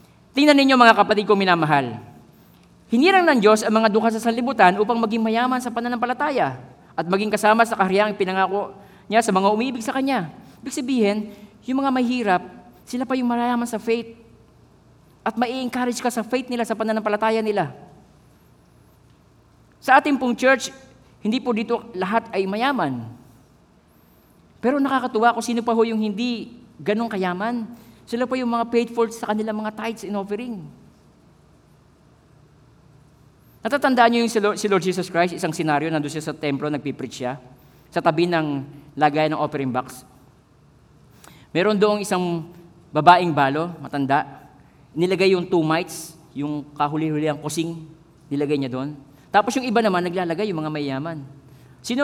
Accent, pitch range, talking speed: native, 155-235 Hz, 150 wpm